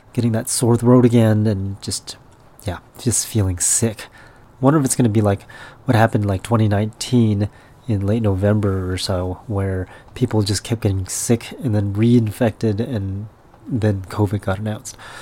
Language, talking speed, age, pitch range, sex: English, 160 wpm, 30-49, 105-125 Hz, male